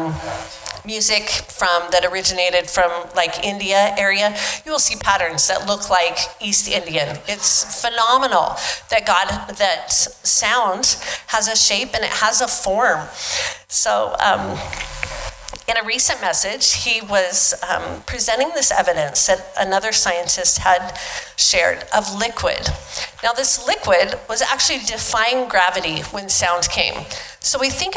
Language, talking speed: English, 135 wpm